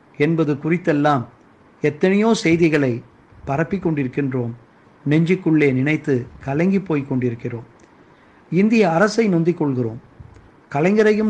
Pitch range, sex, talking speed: 150-200 Hz, male, 85 wpm